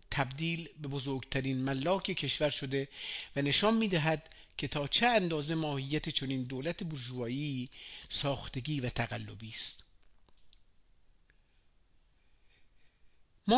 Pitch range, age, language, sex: 145-190 Hz, 50-69, Persian, male